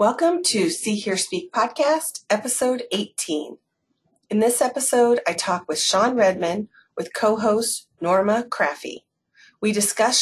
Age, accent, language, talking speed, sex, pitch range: 30-49, American, English, 130 wpm, female, 175-240 Hz